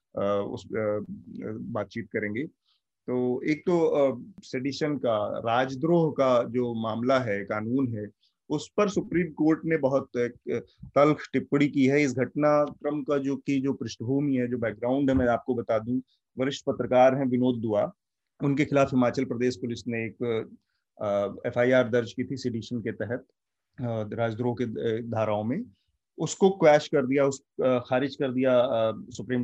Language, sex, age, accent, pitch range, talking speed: Hindi, male, 30-49, native, 115-140 Hz, 155 wpm